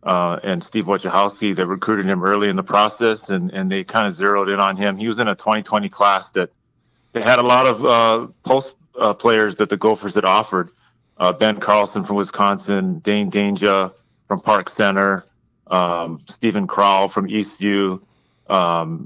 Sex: male